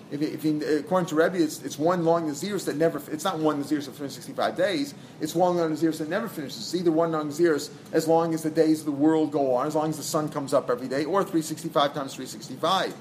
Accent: American